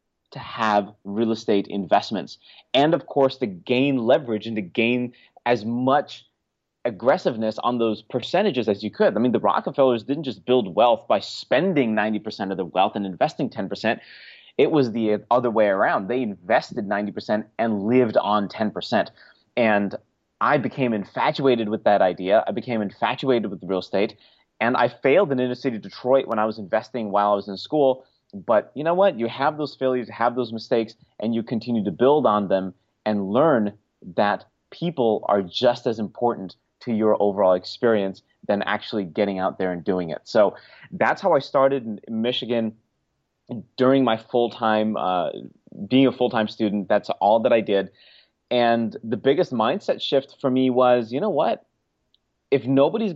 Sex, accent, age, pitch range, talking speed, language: male, American, 30-49, 105-125 Hz, 170 wpm, English